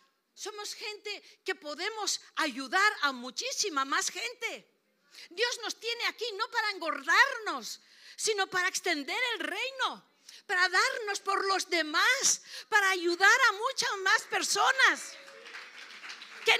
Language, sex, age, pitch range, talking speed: Spanish, female, 50-69, 320-445 Hz, 120 wpm